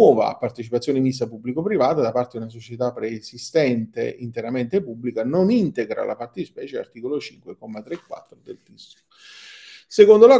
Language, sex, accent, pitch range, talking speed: Italian, male, native, 120-155 Hz, 145 wpm